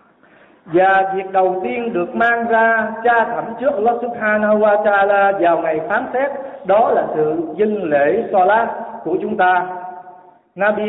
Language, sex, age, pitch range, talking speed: Vietnamese, male, 50-69, 180-225 Hz, 160 wpm